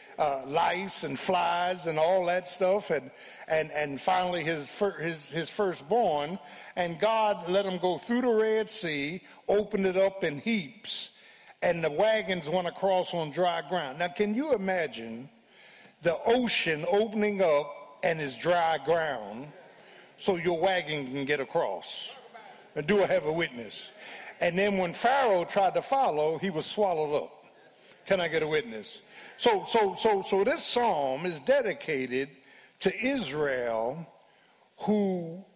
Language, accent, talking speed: English, American, 150 wpm